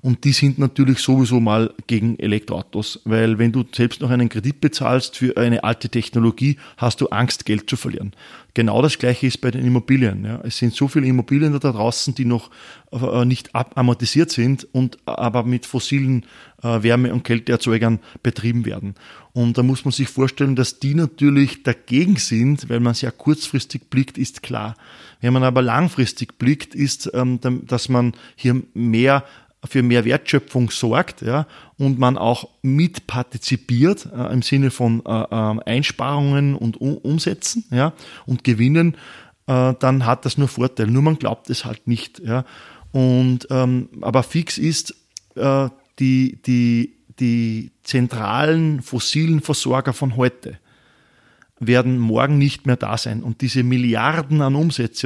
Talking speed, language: 155 wpm, German